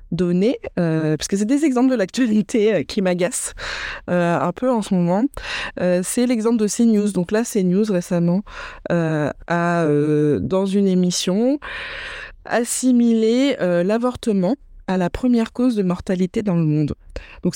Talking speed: 155 wpm